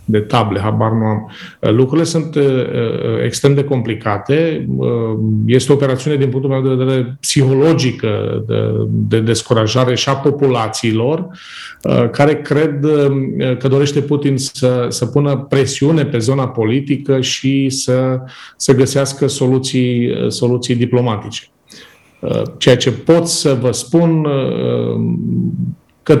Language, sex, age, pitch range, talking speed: Romanian, male, 40-59, 120-140 Hz, 125 wpm